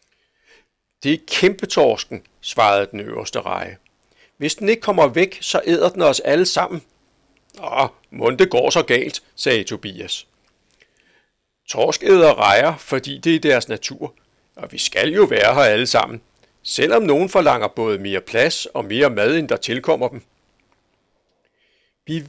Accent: native